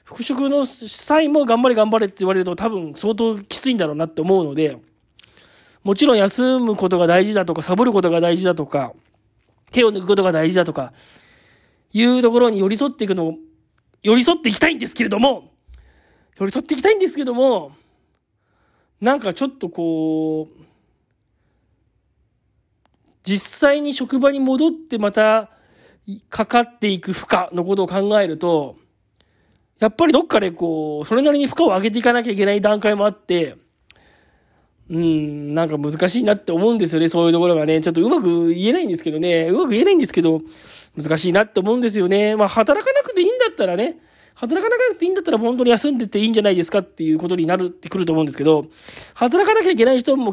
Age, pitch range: 40-59, 165-245 Hz